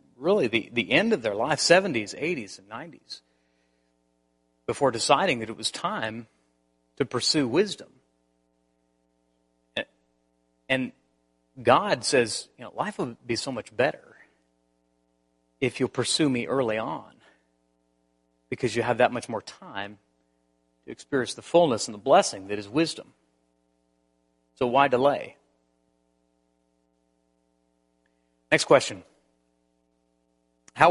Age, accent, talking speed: 40-59, American, 115 wpm